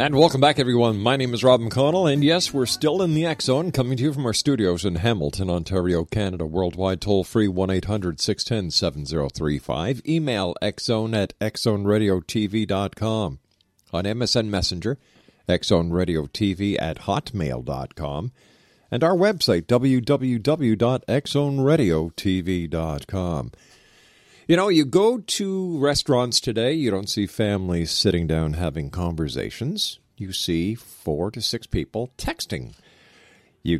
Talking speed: 135 wpm